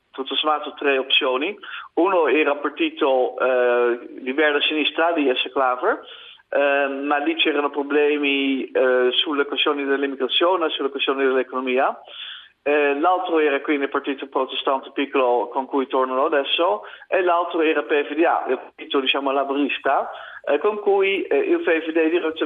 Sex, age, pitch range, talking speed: male, 50-69, 135-160 Hz, 135 wpm